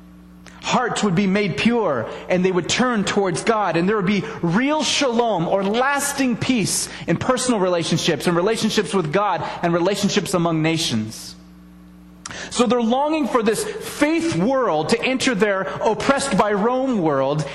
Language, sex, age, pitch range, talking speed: English, male, 30-49, 150-240 Hz, 155 wpm